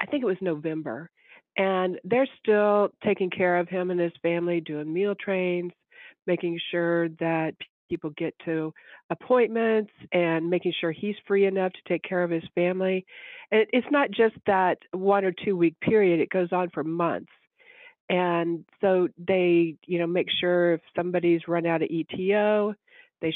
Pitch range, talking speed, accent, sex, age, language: 170-205 Hz, 170 wpm, American, female, 50-69, English